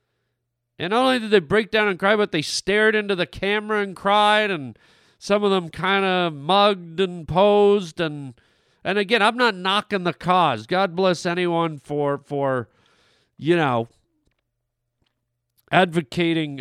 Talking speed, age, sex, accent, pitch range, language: 150 wpm, 40-59, male, American, 140-195 Hz, English